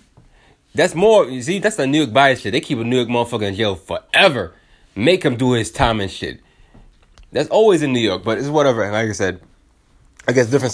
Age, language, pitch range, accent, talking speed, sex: 20-39, English, 105-140 Hz, American, 230 wpm, male